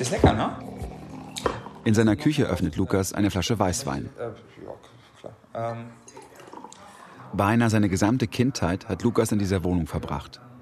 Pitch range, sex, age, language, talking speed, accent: 90-115 Hz, male, 40-59, German, 115 wpm, German